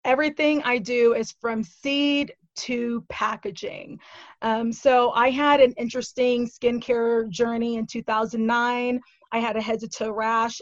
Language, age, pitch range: English, 20-39, 220-250 Hz